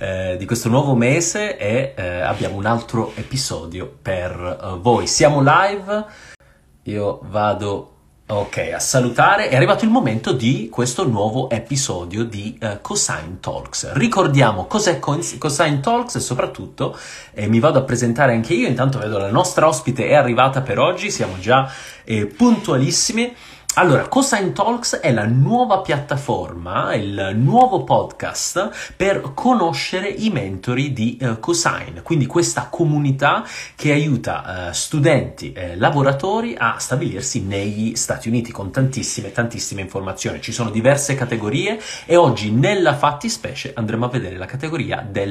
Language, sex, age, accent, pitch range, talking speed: Italian, male, 30-49, native, 110-150 Hz, 140 wpm